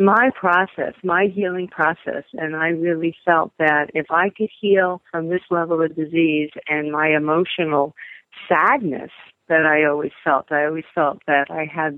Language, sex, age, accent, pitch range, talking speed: English, female, 50-69, American, 155-210 Hz, 165 wpm